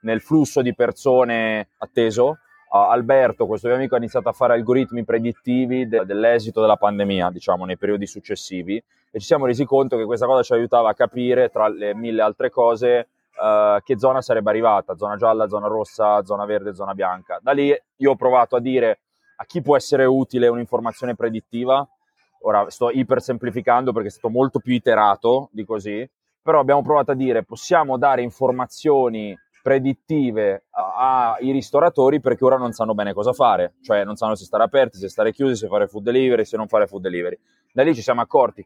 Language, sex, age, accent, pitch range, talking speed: Italian, male, 20-39, native, 110-135 Hz, 185 wpm